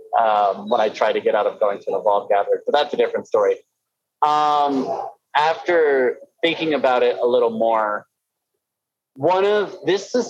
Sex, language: male, English